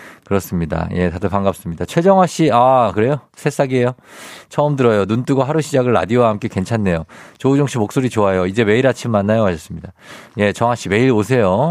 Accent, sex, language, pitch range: native, male, Korean, 95-140 Hz